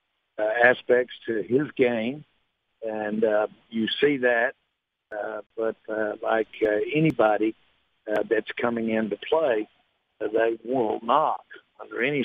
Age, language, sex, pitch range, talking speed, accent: 60-79, English, male, 105-115 Hz, 135 wpm, American